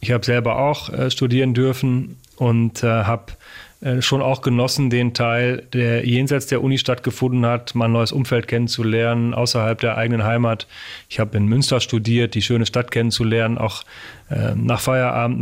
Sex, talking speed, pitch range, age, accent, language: male, 165 wpm, 115-130 Hz, 30-49, German, German